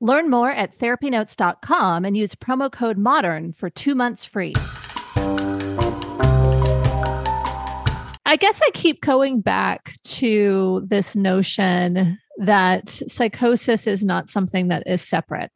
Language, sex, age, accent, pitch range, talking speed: English, female, 30-49, American, 175-220 Hz, 115 wpm